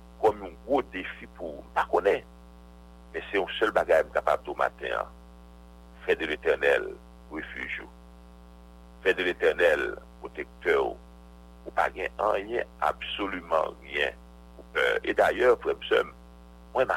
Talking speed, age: 115 wpm, 60-79